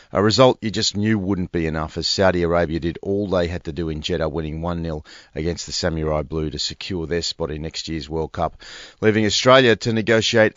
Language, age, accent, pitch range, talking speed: English, 40-59, Australian, 80-100 Hz, 215 wpm